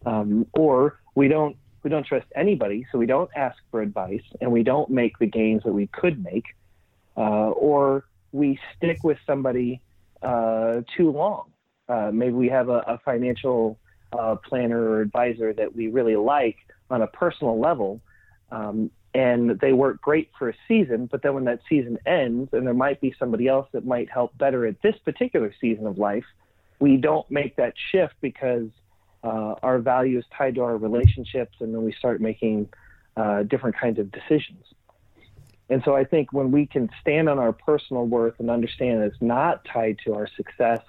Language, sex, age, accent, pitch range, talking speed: English, male, 40-59, American, 110-130 Hz, 185 wpm